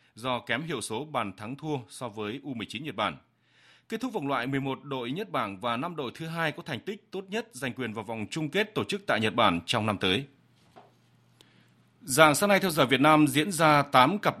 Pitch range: 130-170 Hz